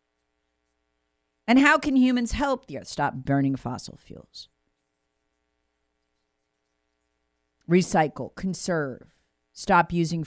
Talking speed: 90 wpm